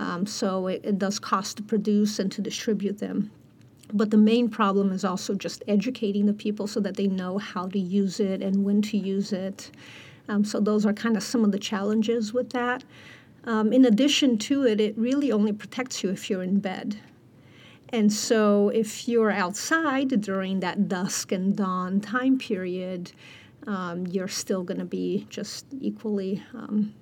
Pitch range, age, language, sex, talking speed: 195-225 Hz, 50-69, English, female, 180 wpm